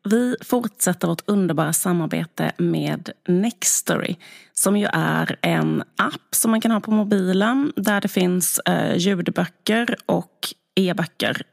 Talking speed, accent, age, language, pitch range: 125 wpm, native, 30-49, Swedish, 175-220 Hz